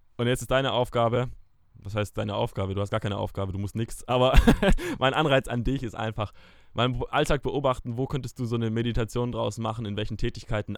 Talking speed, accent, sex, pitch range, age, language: 210 wpm, German, male, 110-130 Hz, 20-39, German